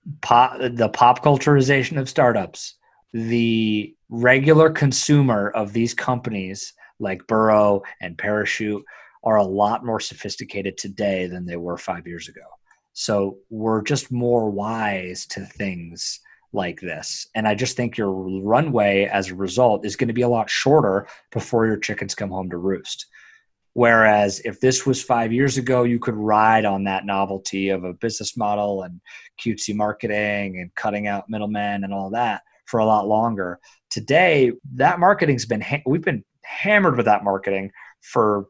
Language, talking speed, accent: English, 155 wpm, American